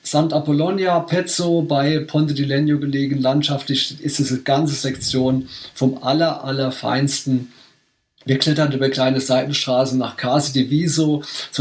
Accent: German